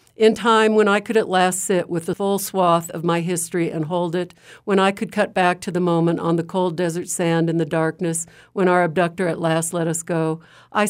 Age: 60-79